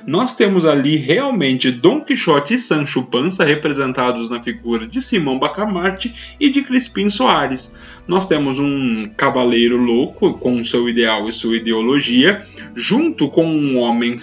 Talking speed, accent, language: 145 wpm, Brazilian, Portuguese